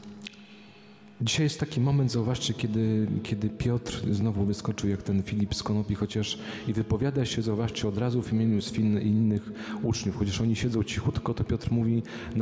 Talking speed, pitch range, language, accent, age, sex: 175 wpm, 100-115 Hz, Polish, native, 40-59, male